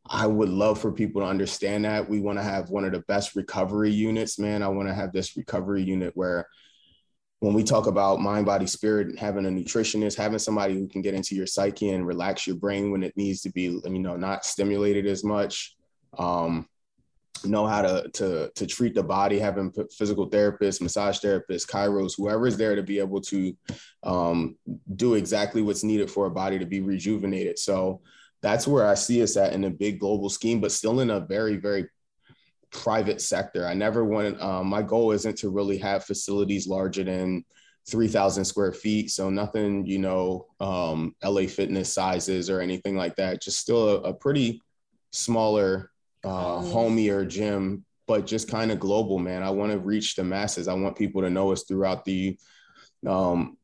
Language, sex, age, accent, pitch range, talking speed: English, male, 20-39, American, 95-105 Hz, 190 wpm